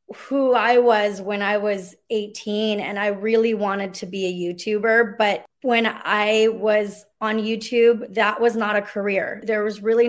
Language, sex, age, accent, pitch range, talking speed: English, female, 20-39, American, 200-235 Hz, 170 wpm